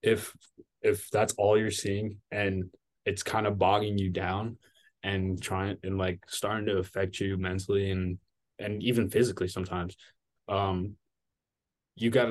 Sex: male